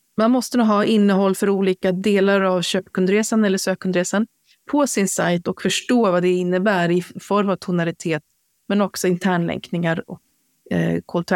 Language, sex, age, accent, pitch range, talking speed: Swedish, female, 30-49, native, 175-210 Hz, 160 wpm